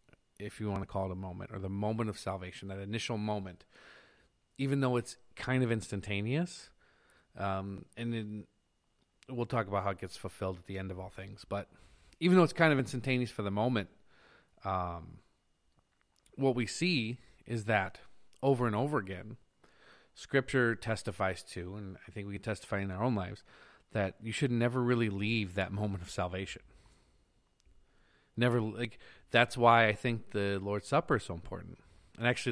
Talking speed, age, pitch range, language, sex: 175 wpm, 30-49, 95-120 Hz, English, male